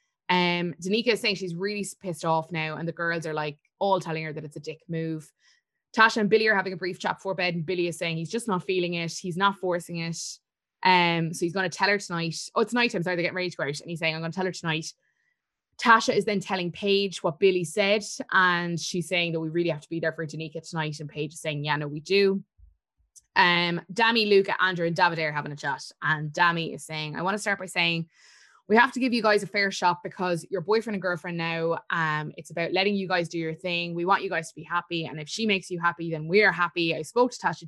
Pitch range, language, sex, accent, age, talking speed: 165-200 Hz, English, female, Irish, 20-39, 265 wpm